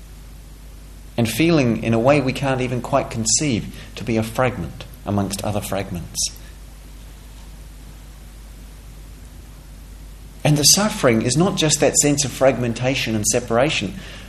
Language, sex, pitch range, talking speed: English, male, 115-150 Hz, 120 wpm